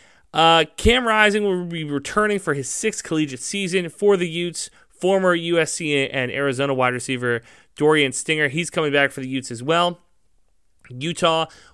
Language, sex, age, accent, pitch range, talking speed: English, male, 30-49, American, 130-175 Hz, 160 wpm